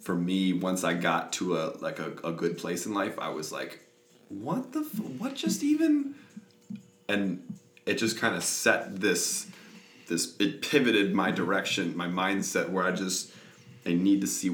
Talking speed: 180 wpm